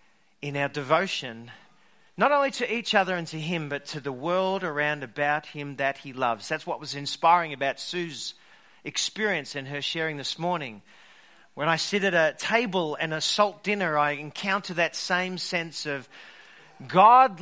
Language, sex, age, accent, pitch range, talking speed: English, male, 40-59, Australian, 145-190 Hz, 170 wpm